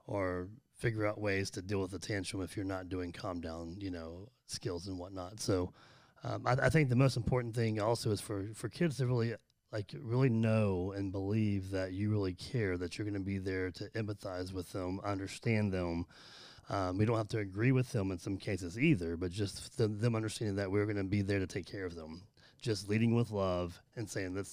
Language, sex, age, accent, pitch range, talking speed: English, male, 30-49, American, 95-115 Hz, 225 wpm